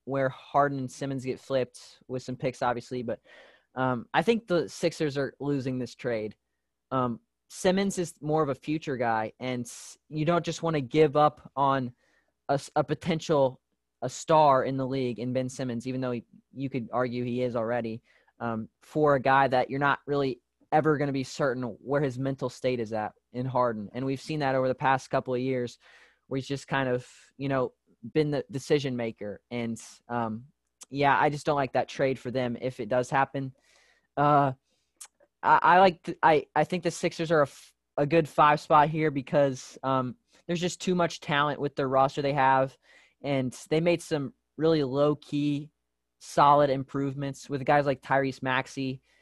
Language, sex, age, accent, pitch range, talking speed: English, male, 20-39, American, 125-145 Hz, 190 wpm